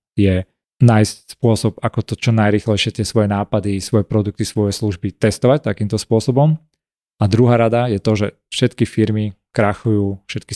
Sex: male